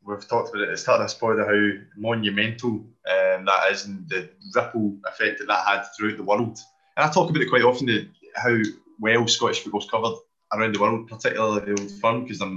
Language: English